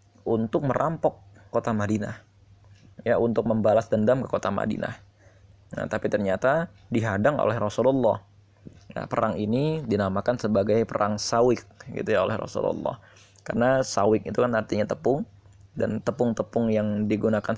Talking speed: 130 wpm